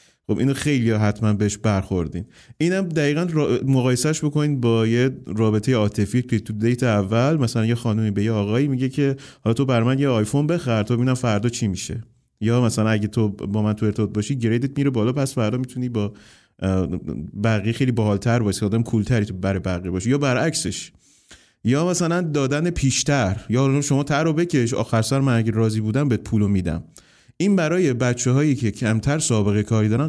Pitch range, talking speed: 105-130 Hz, 185 wpm